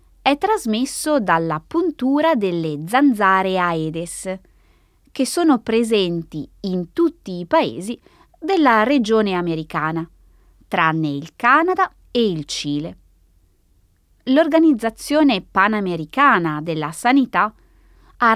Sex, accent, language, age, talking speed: female, native, Italian, 20-39, 90 wpm